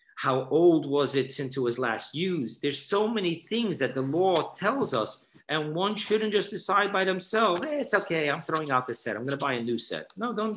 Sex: male